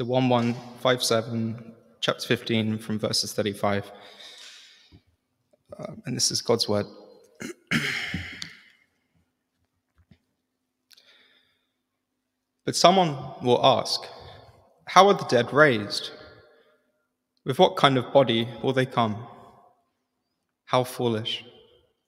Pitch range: 115-135 Hz